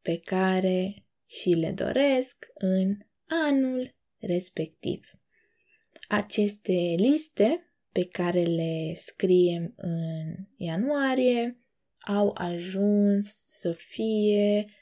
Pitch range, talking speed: 180-240 Hz, 80 wpm